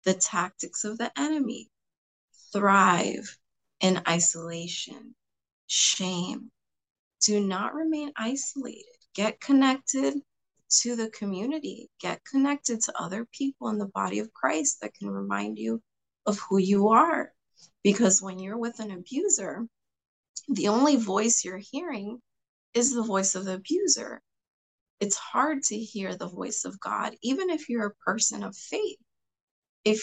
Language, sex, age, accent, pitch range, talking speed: English, female, 20-39, American, 190-265 Hz, 140 wpm